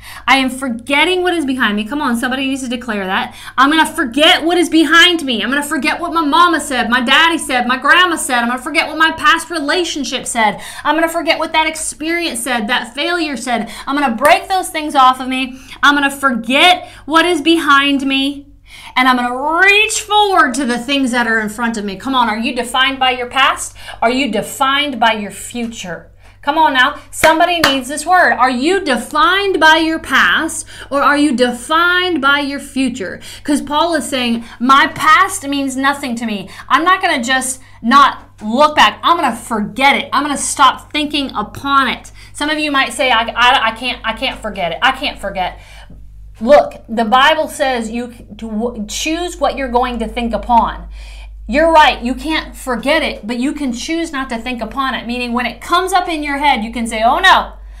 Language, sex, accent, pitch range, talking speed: English, female, American, 240-315 Hz, 215 wpm